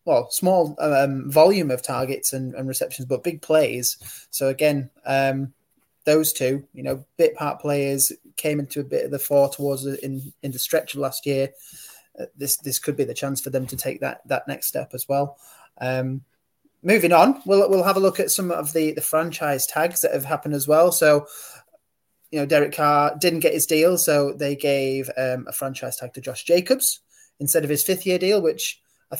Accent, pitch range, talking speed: British, 130-160 Hz, 210 wpm